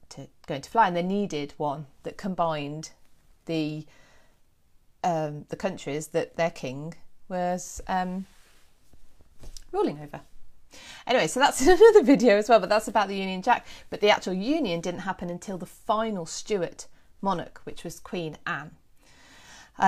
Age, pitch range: 30-49, 145-195 Hz